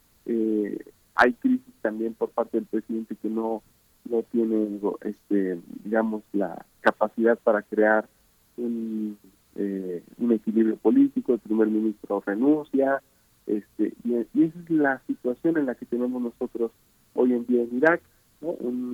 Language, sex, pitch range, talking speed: Spanish, male, 110-135 Hz, 145 wpm